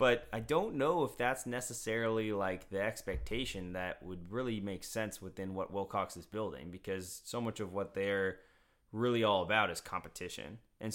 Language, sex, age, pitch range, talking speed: English, male, 20-39, 100-125 Hz, 175 wpm